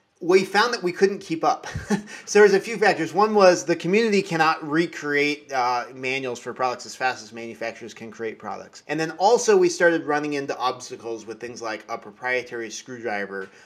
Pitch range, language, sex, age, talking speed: 120-175 Hz, English, male, 30-49, 195 wpm